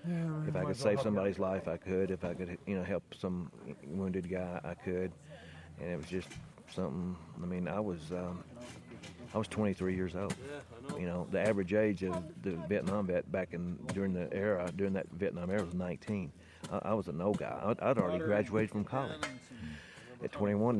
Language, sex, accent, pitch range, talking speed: English, male, American, 95-120 Hz, 195 wpm